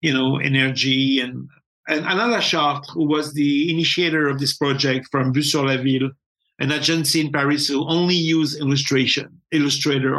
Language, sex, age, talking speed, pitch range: English, male, 60-79, 165 wpm, 145-180 Hz